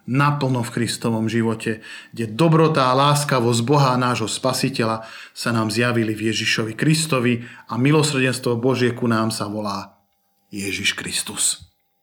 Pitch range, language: 110-135 Hz, Slovak